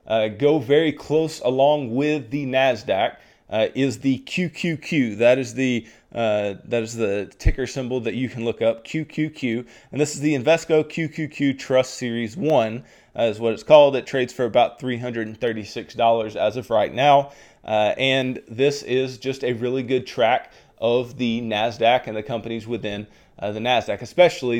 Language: English